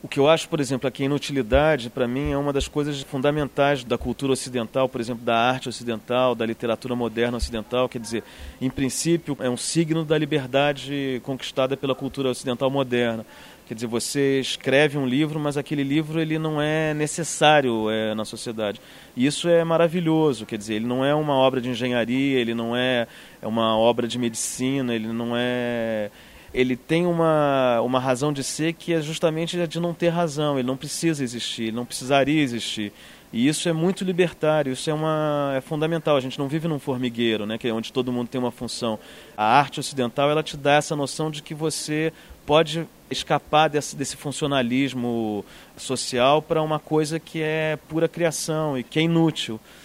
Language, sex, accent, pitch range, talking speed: Portuguese, male, Brazilian, 120-155 Hz, 190 wpm